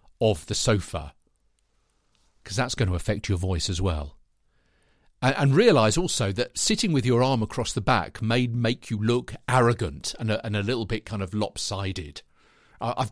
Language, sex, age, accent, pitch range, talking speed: English, male, 50-69, British, 105-135 Hz, 185 wpm